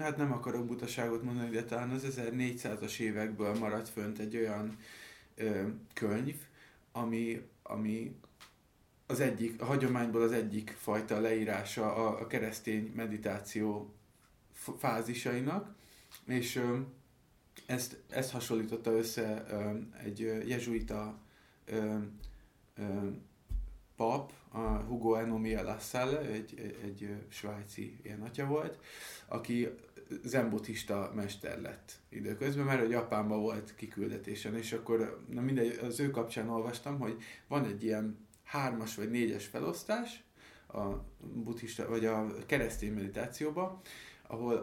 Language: Hungarian